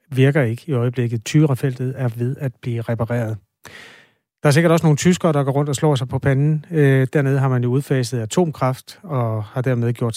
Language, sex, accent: Danish, male, native